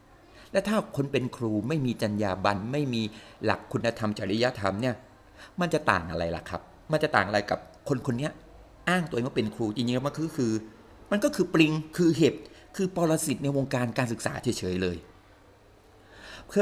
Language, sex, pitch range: Thai, male, 105-145 Hz